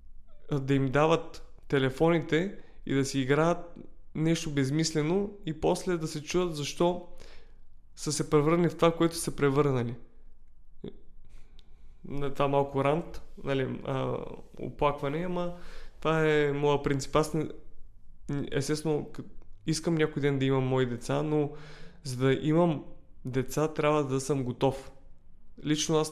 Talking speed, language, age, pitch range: 125 wpm, Bulgarian, 20-39, 125-155 Hz